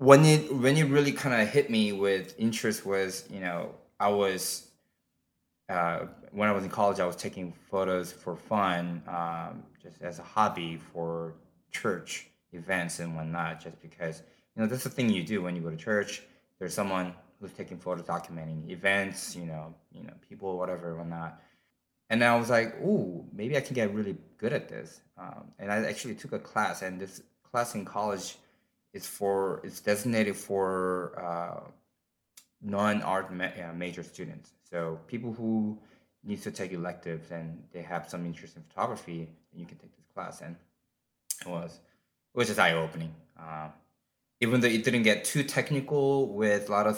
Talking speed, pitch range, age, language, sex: 185 wpm, 85-105 Hz, 20-39, English, male